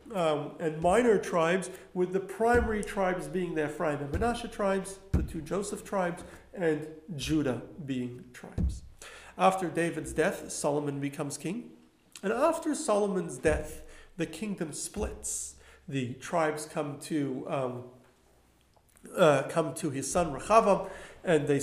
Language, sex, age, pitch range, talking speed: English, male, 40-59, 150-190 Hz, 135 wpm